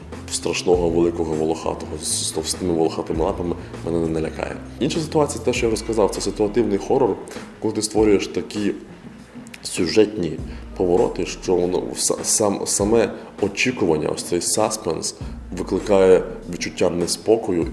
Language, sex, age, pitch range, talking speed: Ukrainian, male, 20-39, 90-125 Hz, 120 wpm